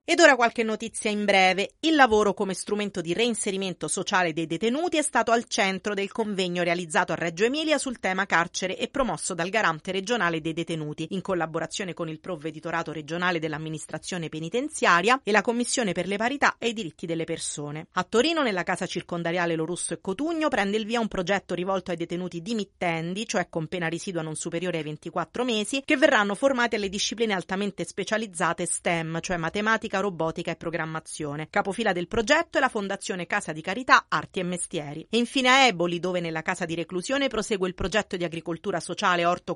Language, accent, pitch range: Italian, native, 170-220 Hz